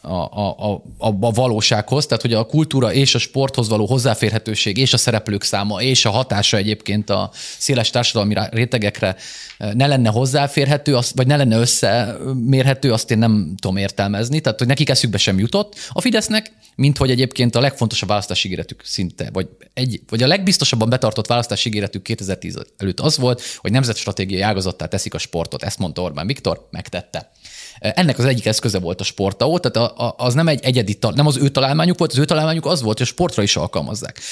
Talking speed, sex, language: 175 wpm, male, Hungarian